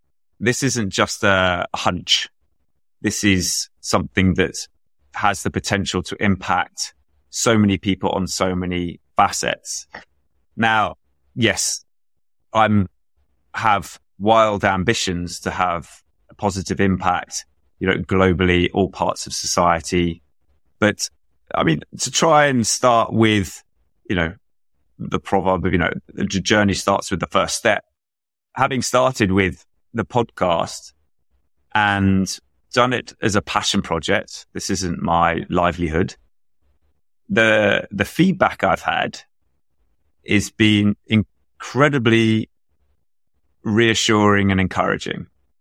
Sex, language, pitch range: male, English, 80-105 Hz